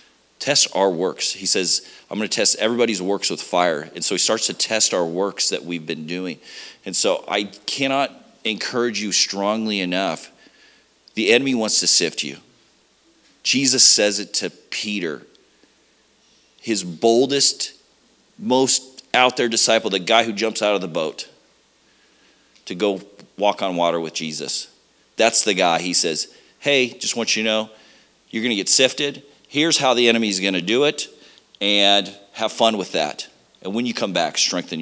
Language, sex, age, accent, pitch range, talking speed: English, male, 40-59, American, 90-120 Hz, 175 wpm